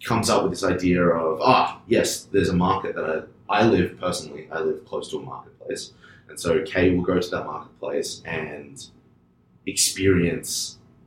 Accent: Australian